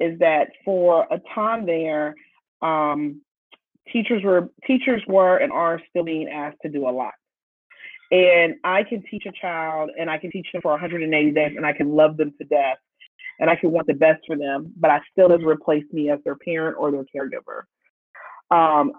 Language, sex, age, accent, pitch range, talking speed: English, female, 30-49, American, 150-175 Hz, 195 wpm